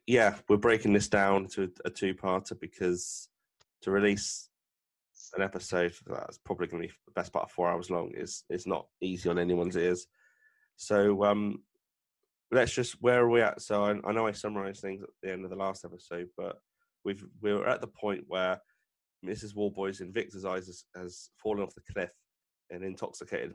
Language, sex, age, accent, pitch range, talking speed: English, male, 20-39, British, 90-105 Hz, 190 wpm